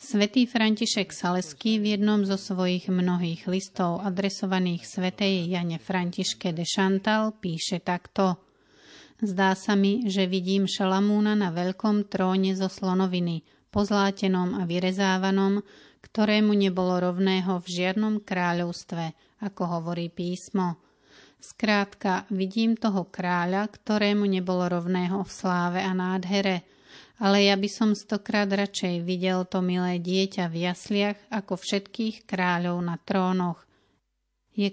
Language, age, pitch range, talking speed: Slovak, 30-49, 180-205 Hz, 120 wpm